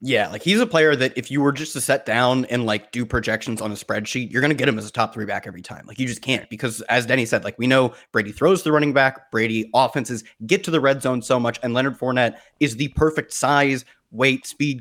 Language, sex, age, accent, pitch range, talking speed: English, male, 20-39, American, 120-150 Hz, 270 wpm